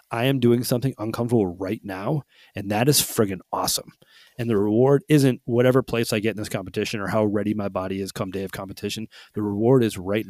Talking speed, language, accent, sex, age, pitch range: 215 wpm, English, American, male, 30-49, 100-120 Hz